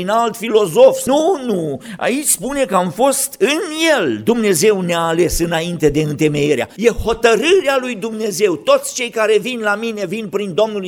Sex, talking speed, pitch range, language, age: male, 165 wpm, 180-250 Hz, Romanian, 50-69